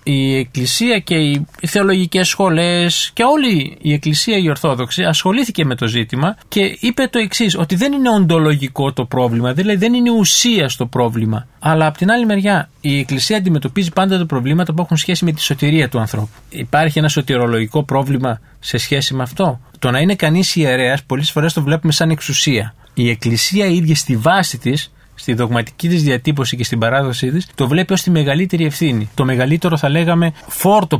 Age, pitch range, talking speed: 20-39, 120-170 Hz, 185 wpm